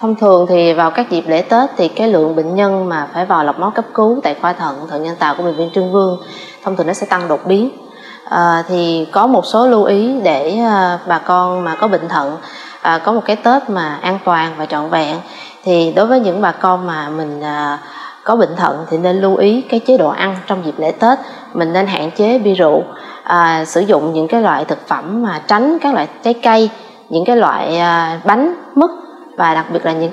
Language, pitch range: Vietnamese, 170-230 Hz